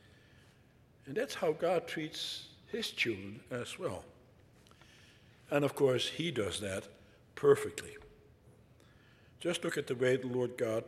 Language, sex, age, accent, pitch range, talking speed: English, male, 60-79, American, 130-185 Hz, 130 wpm